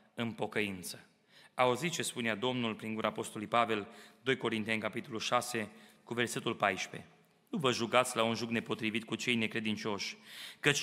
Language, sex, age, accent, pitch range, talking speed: Romanian, male, 30-49, native, 125-175 Hz, 155 wpm